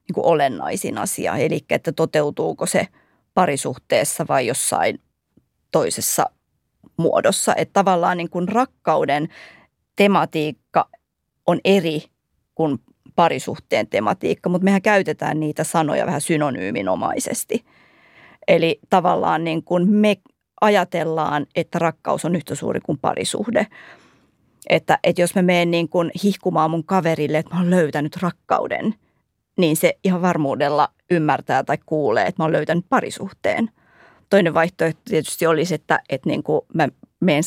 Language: Finnish